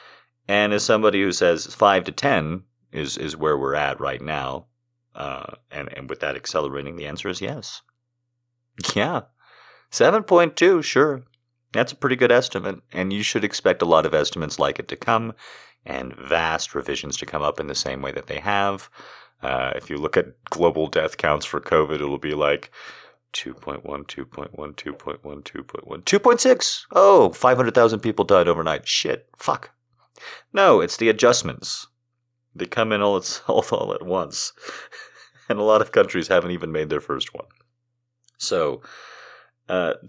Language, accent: English, American